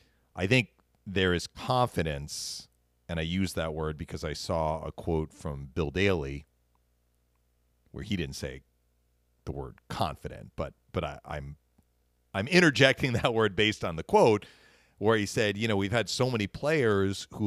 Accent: American